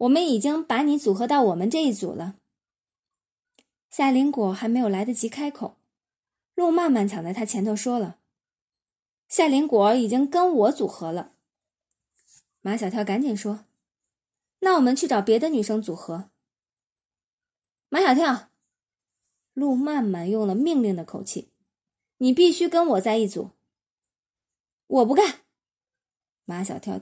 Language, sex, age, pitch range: Chinese, female, 20-39, 210-310 Hz